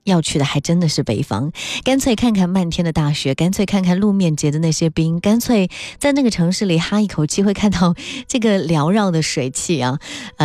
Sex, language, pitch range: female, Chinese, 140-195 Hz